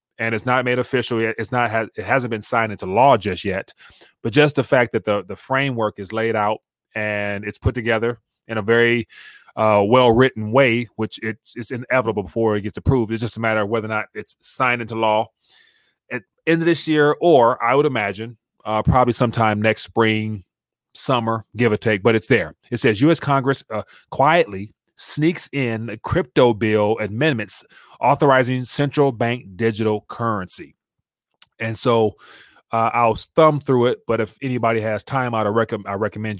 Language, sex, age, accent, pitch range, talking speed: English, male, 30-49, American, 110-125 Hz, 185 wpm